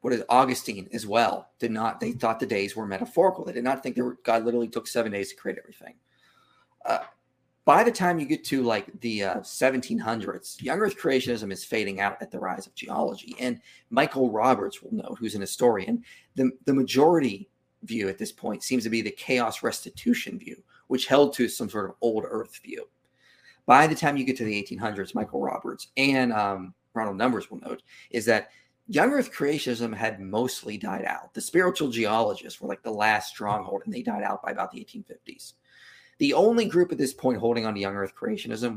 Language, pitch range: English, 110-135 Hz